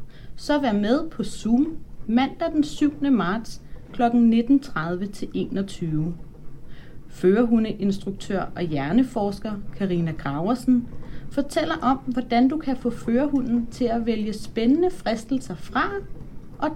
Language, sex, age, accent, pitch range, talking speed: Danish, female, 30-49, native, 175-260 Hz, 115 wpm